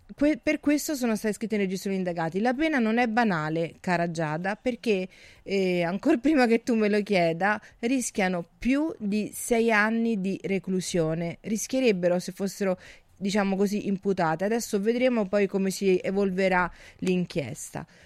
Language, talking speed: Italian, 150 wpm